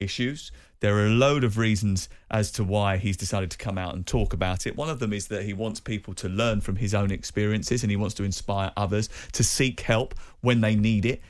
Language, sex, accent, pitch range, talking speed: English, male, British, 100-125 Hz, 245 wpm